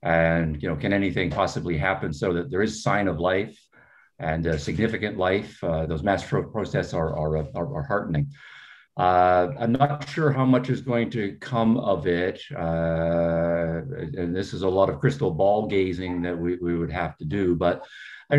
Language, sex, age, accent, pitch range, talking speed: English, male, 50-69, American, 85-115 Hz, 195 wpm